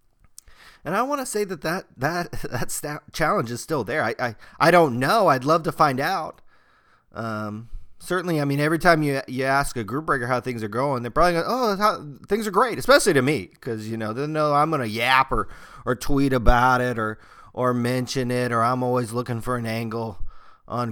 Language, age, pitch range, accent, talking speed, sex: English, 30-49, 110-145 Hz, American, 220 wpm, male